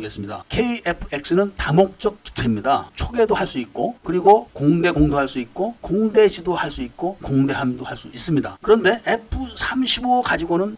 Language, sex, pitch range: Korean, male, 145-210 Hz